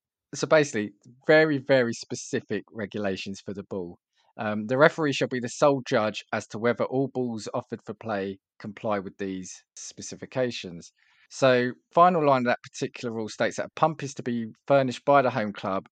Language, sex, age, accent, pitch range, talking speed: English, male, 20-39, British, 100-130 Hz, 180 wpm